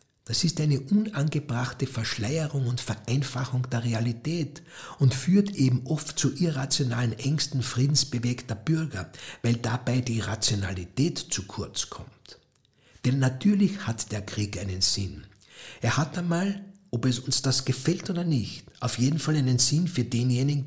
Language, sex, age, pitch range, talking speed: German, male, 60-79, 115-150 Hz, 140 wpm